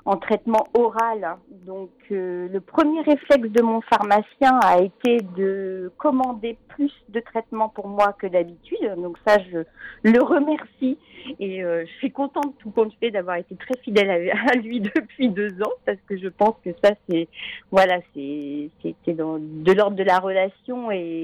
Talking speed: 170 wpm